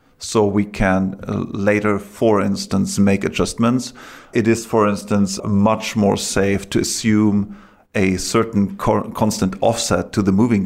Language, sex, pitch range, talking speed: English, male, 100-110 Hz, 135 wpm